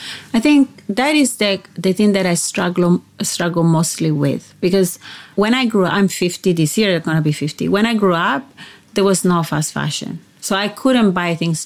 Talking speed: 210 wpm